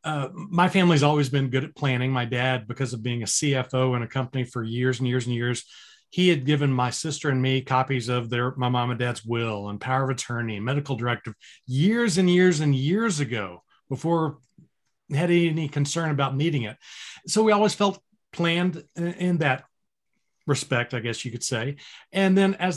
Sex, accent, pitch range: male, American, 130-160 Hz